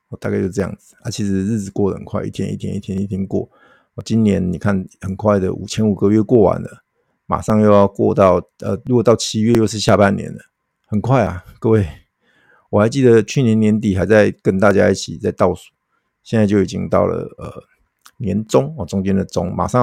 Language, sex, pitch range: Chinese, male, 95-110 Hz